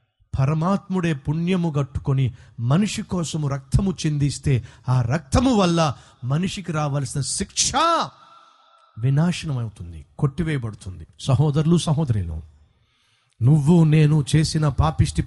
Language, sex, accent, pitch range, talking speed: Telugu, male, native, 120-155 Hz, 85 wpm